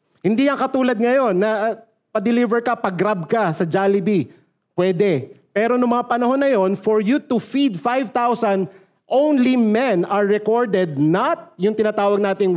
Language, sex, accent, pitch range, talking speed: Filipino, male, native, 190-240 Hz, 150 wpm